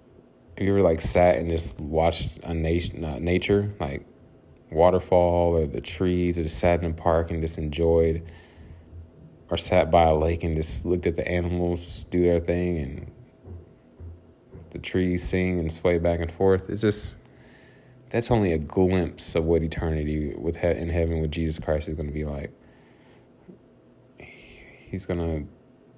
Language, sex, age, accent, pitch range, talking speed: English, male, 20-39, American, 80-90 Hz, 165 wpm